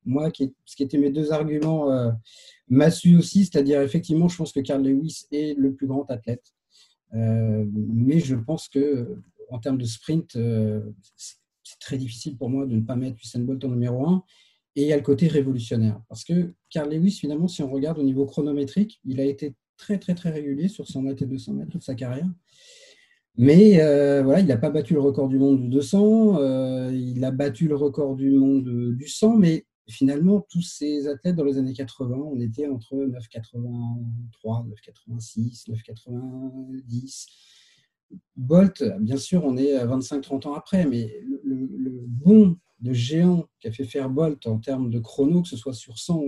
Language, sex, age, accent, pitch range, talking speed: French, male, 40-59, French, 125-160 Hz, 190 wpm